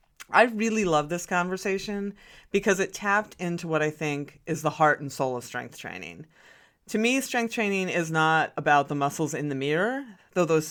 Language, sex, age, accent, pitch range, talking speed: English, female, 30-49, American, 155-210 Hz, 190 wpm